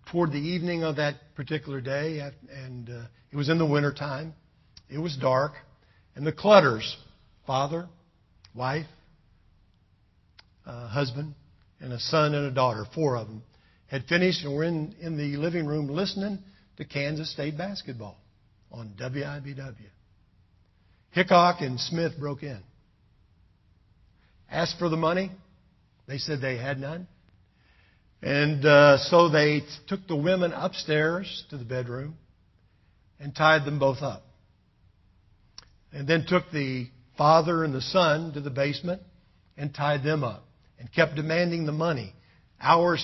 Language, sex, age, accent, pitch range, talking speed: English, male, 60-79, American, 110-155 Hz, 140 wpm